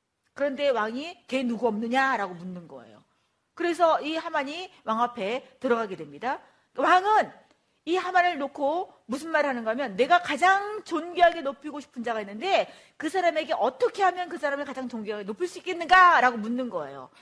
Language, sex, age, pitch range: Korean, female, 40-59, 245-360 Hz